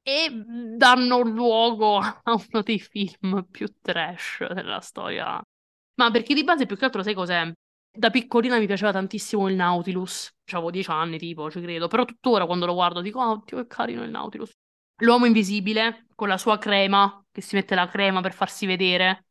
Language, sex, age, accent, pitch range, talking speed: Italian, female, 20-39, native, 185-220 Hz, 185 wpm